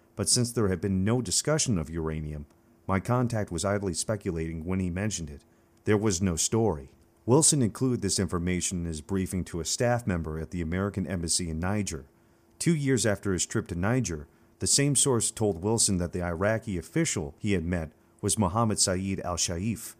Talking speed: 190 wpm